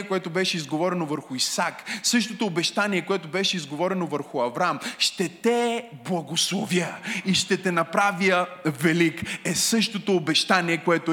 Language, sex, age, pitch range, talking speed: Bulgarian, male, 20-39, 165-215 Hz, 130 wpm